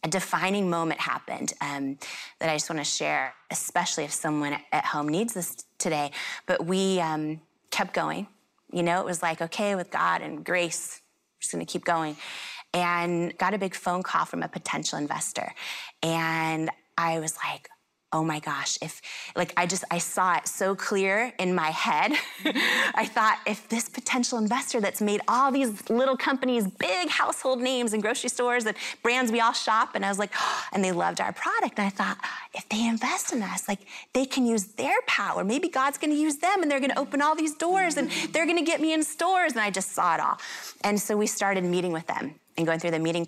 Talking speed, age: 215 wpm, 30-49